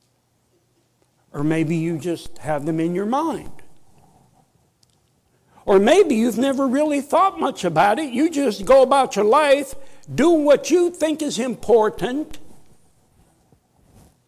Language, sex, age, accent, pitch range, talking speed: English, male, 60-79, American, 185-285 Hz, 125 wpm